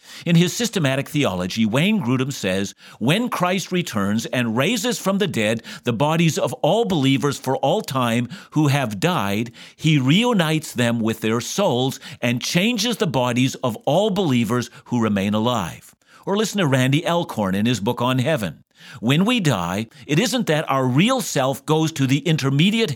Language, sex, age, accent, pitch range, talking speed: English, male, 50-69, American, 120-170 Hz, 170 wpm